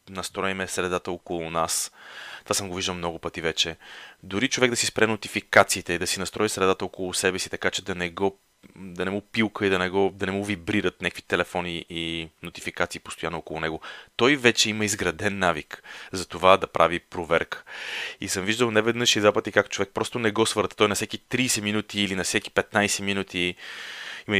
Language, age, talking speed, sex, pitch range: Bulgarian, 30-49, 205 wpm, male, 90-110 Hz